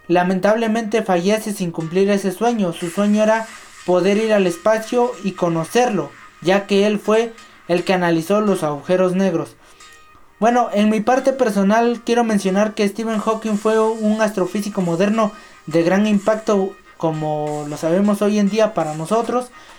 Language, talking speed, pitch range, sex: Spanish, 150 wpm, 175-220 Hz, male